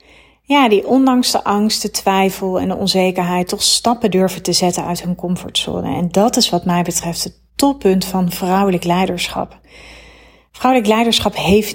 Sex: female